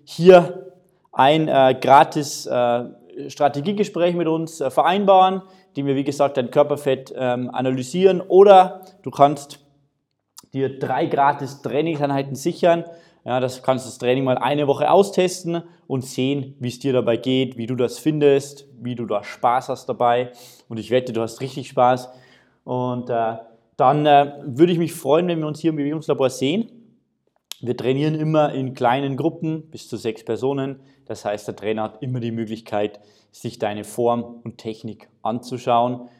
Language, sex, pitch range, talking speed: German, male, 115-145 Hz, 160 wpm